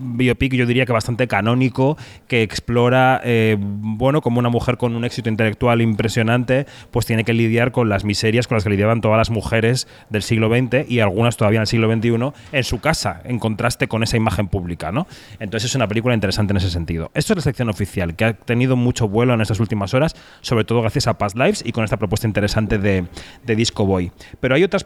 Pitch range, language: 110-130 Hz, Spanish